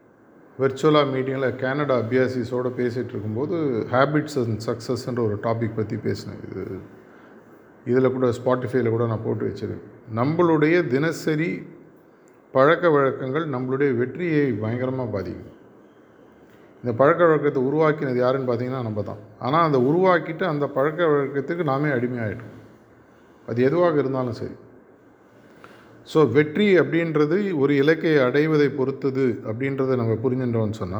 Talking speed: 115 wpm